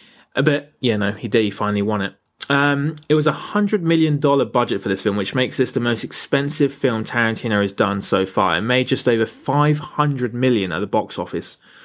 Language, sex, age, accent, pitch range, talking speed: English, male, 20-39, British, 115-155 Hz, 220 wpm